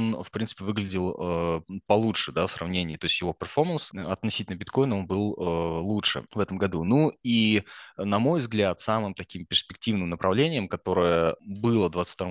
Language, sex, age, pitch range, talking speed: Russian, male, 20-39, 85-105 Hz, 165 wpm